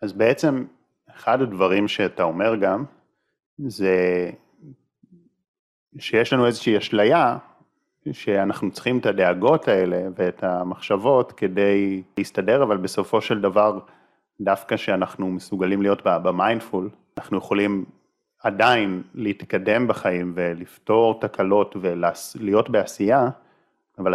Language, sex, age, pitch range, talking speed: Hebrew, male, 30-49, 95-125 Hz, 100 wpm